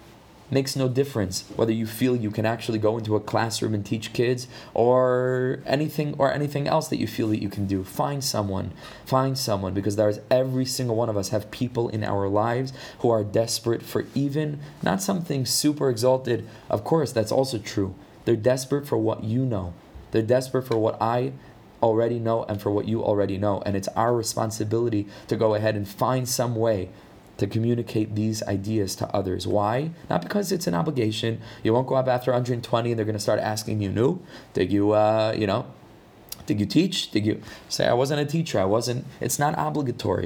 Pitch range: 110-130 Hz